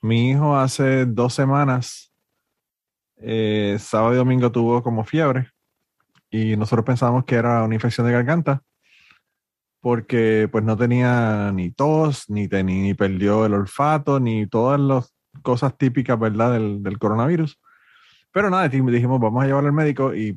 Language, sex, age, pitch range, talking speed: Spanish, male, 30-49, 110-130 Hz, 155 wpm